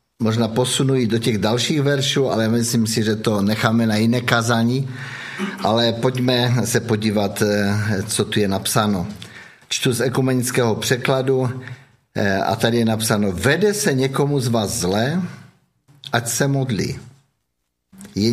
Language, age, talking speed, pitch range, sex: Czech, 50-69, 135 wpm, 110-135 Hz, male